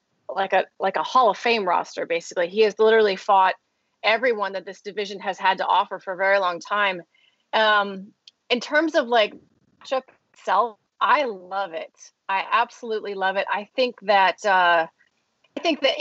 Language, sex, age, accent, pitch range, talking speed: English, female, 30-49, American, 190-230 Hz, 170 wpm